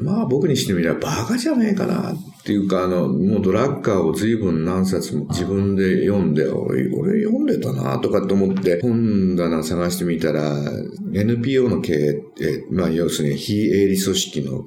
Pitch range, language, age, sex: 75-110 Hz, Japanese, 50-69, male